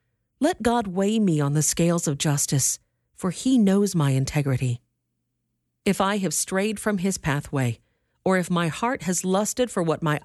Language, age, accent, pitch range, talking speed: English, 50-69, American, 150-220 Hz, 175 wpm